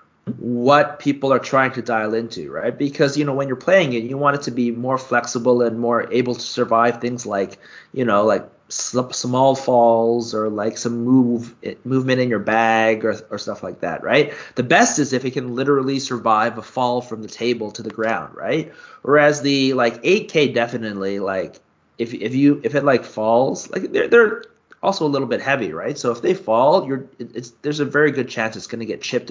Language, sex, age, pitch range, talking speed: English, male, 30-49, 110-140 Hz, 210 wpm